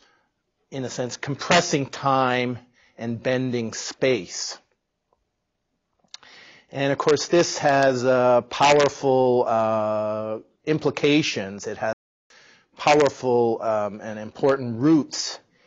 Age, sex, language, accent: 40-59, male, English, American